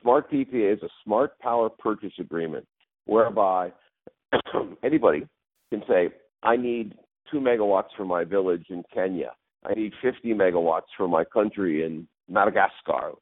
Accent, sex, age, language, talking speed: American, male, 50-69, English, 135 wpm